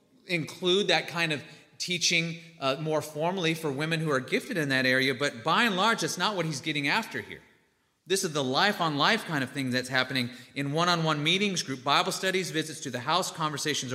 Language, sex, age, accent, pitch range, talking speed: English, male, 30-49, American, 135-185 Hz, 200 wpm